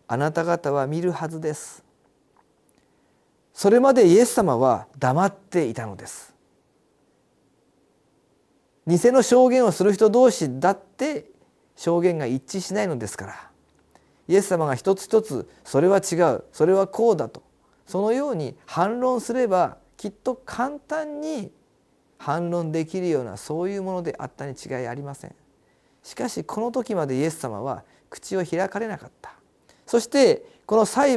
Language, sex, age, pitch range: Japanese, male, 40-59, 150-225 Hz